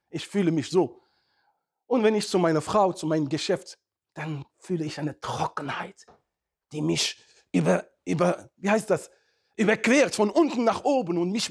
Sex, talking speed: male, 165 wpm